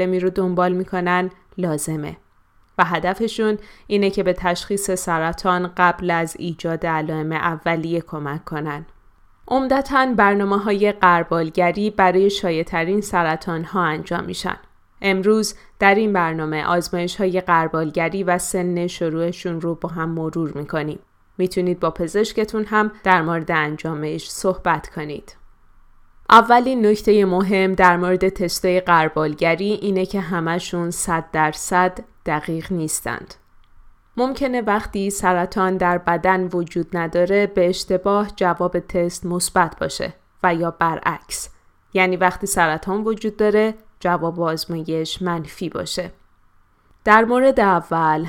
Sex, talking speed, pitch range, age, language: female, 115 wpm, 165-195 Hz, 20-39, Persian